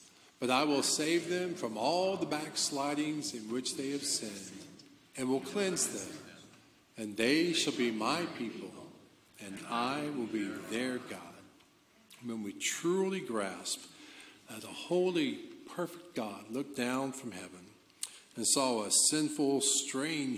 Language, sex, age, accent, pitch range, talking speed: English, male, 50-69, American, 115-175 Hz, 145 wpm